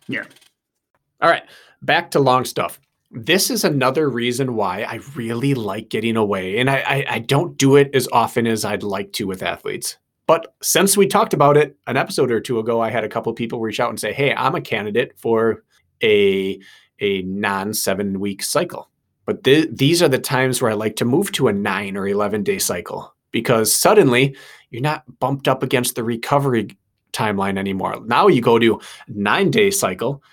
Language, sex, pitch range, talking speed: English, male, 105-135 Hz, 195 wpm